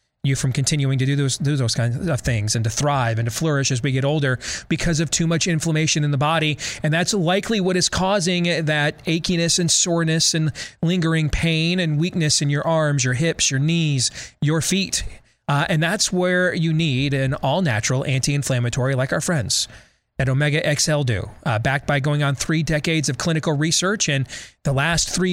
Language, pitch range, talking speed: English, 140-170 Hz, 195 wpm